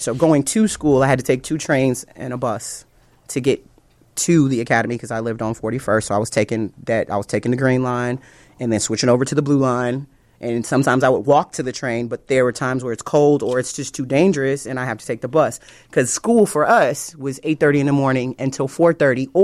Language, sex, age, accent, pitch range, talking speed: English, male, 30-49, American, 125-160 Hz, 245 wpm